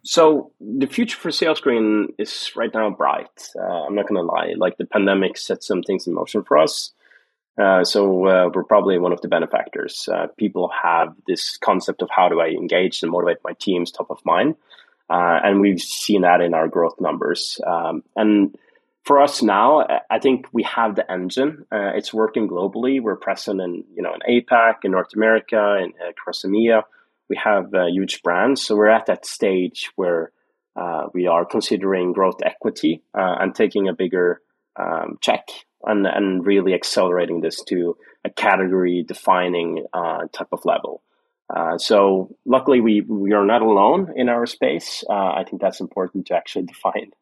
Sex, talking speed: male, 185 wpm